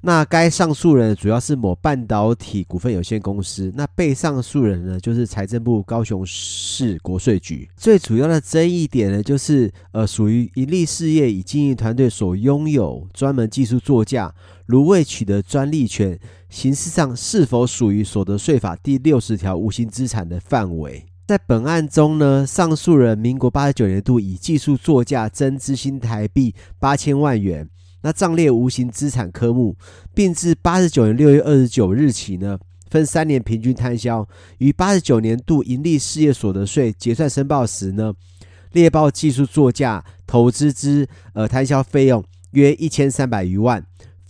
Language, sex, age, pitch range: Chinese, male, 30-49, 100-145 Hz